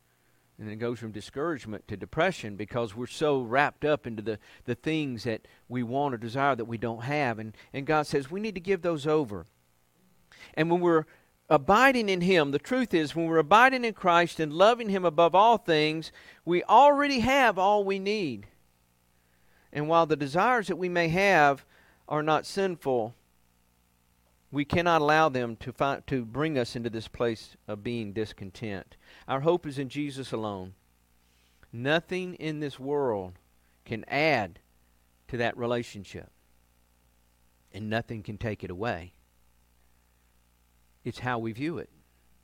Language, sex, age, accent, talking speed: English, male, 50-69, American, 160 wpm